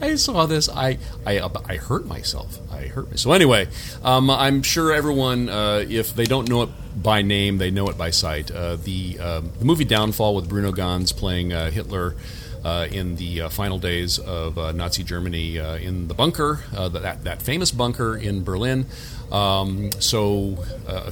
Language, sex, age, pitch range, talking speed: English, male, 40-59, 90-120 Hz, 190 wpm